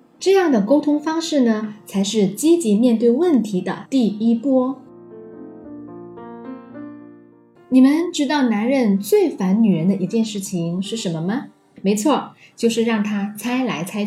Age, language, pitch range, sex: 10-29, Chinese, 205-295 Hz, female